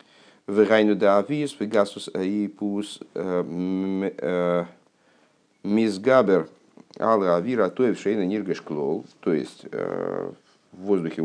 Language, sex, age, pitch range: Russian, male, 50-69, 90-110 Hz